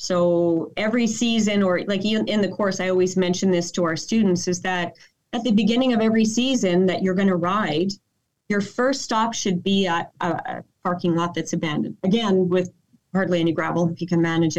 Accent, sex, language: American, female, English